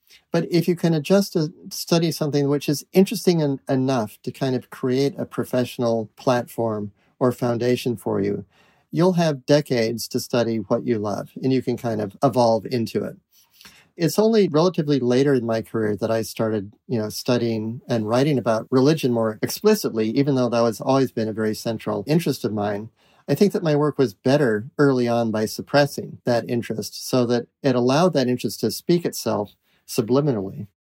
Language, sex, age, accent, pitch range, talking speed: English, male, 40-59, American, 115-145 Hz, 185 wpm